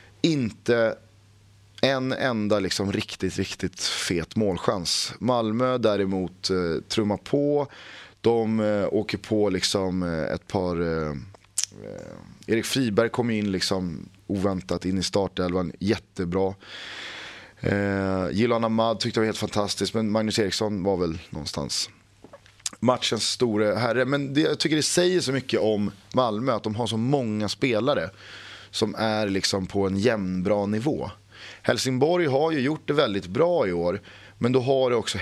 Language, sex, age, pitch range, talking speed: Swedish, male, 30-49, 95-120 Hz, 150 wpm